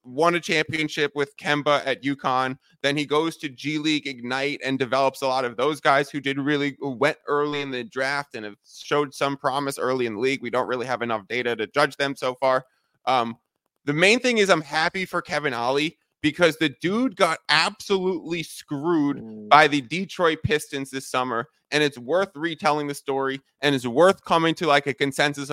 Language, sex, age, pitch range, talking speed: English, male, 20-39, 135-175 Hz, 200 wpm